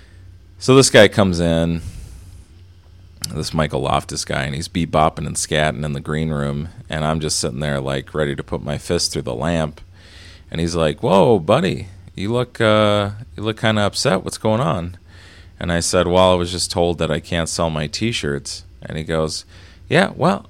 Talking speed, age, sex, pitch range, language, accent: 195 wpm, 30-49, male, 80-95 Hz, English, American